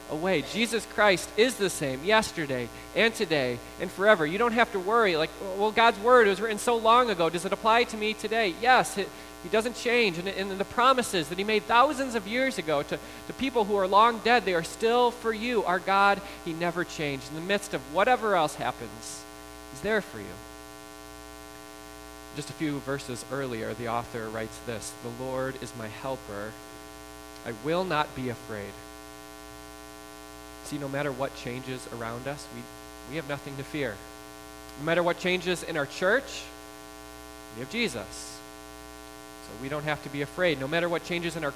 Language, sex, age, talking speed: English, male, 20-39, 185 wpm